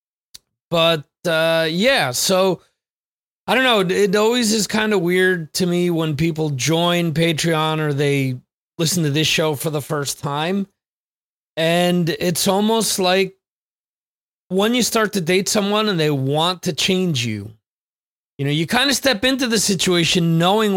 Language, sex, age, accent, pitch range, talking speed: English, male, 30-49, American, 140-185 Hz, 160 wpm